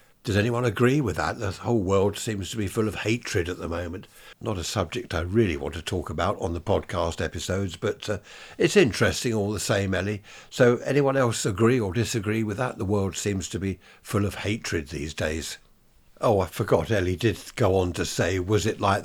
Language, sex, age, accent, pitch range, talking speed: English, male, 60-79, British, 90-115 Hz, 215 wpm